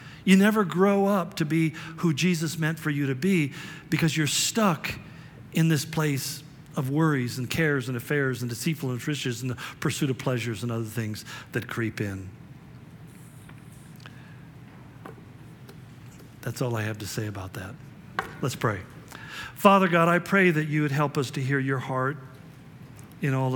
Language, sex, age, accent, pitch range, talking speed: English, male, 50-69, American, 135-165 Hz, 165 wpm